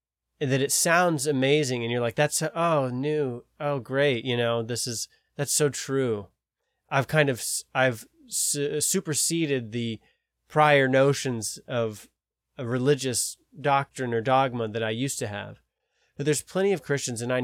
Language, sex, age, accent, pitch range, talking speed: English, male, 20-39, American, 115-140 Hz, 155 wpm